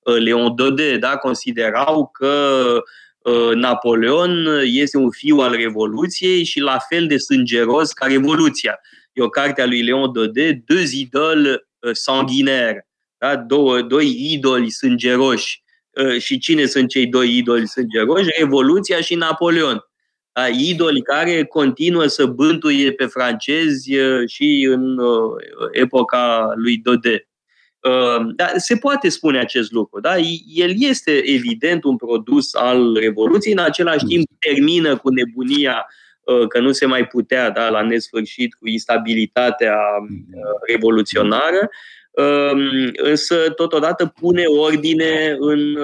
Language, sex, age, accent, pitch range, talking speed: Romanian, male, 20-39, native, 120-160 Hz, 110 wpm